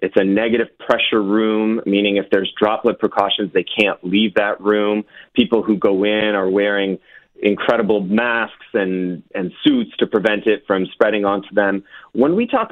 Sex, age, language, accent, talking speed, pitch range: male, 30-49, English, American, 170 wpm, 100-120 Hz